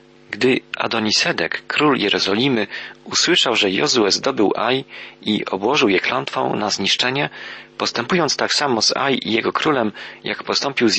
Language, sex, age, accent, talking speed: Polish, male, 40-59, native, 140 wpm